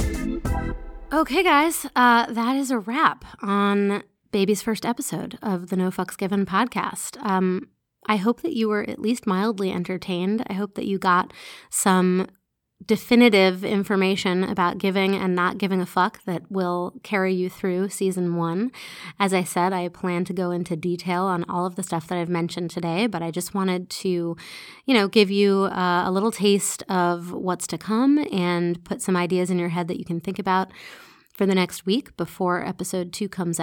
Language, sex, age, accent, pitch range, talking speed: English, female, 30-49, American, 175-205 Hz, 185 wpm